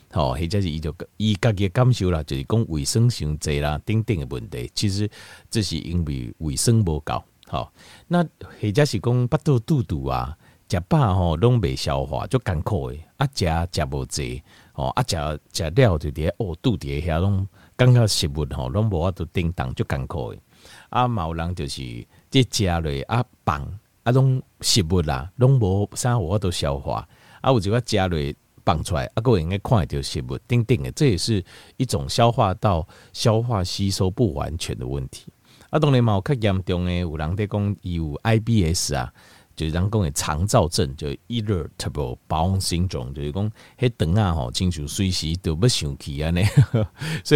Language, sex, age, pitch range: Chinese, male, 50-69, 80-120 Hz